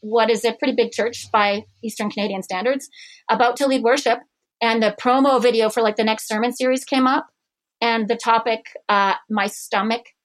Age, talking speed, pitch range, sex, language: 30-49, 185 wpm, 205-250 Hz, female, English